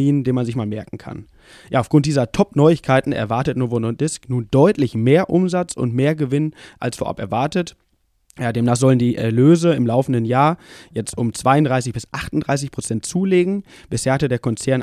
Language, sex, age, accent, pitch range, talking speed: German, male, 20-39, German, 120-150 Hz, 175 wpm